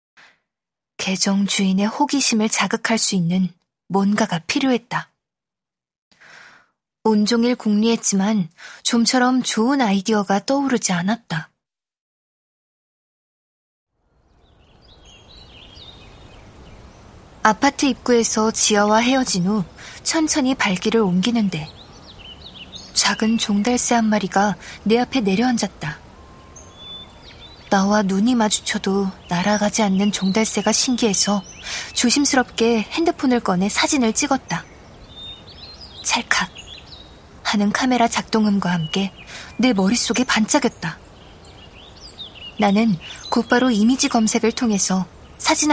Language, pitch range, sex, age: Korean, 200-245 Hz, female, 20-39